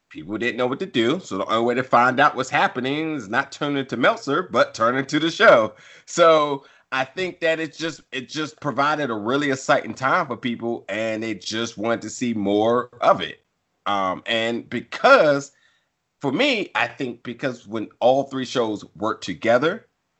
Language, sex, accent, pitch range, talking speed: English, male, American, 110-130 Hz, 185 wpm